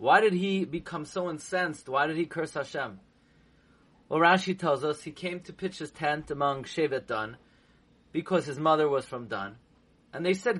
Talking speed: 185 wpm